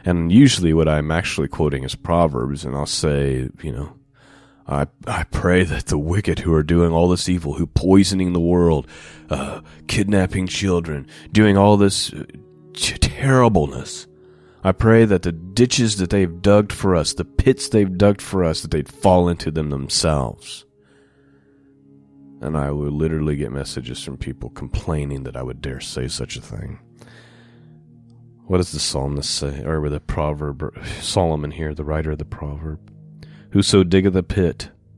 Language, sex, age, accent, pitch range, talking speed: English, male, 30-49, American, 75-100 Hz, 165 wpm